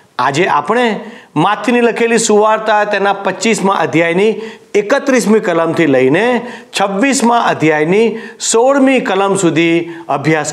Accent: native